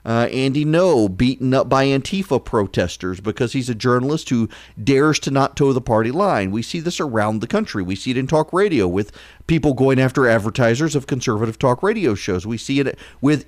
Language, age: English, 40-59